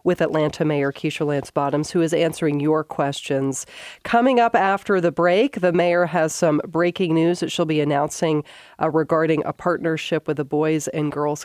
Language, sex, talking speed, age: English, female, 185 wpm, 40-59